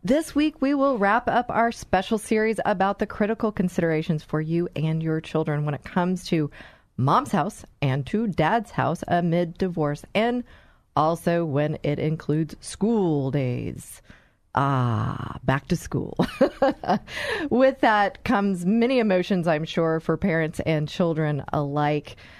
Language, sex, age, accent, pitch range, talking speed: English, female, 40-59, American, 160-215 Hz, 140 wpm